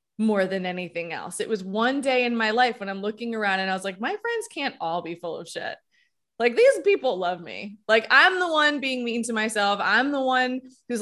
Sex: female